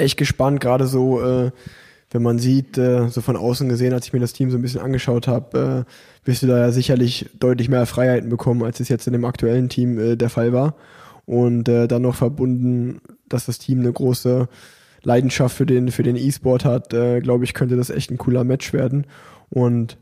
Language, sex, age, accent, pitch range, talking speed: German, male, 20-39, German, 125-135 Hz, 210 wpm